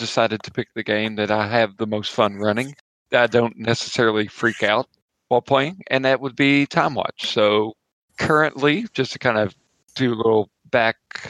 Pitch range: 110-130 Hz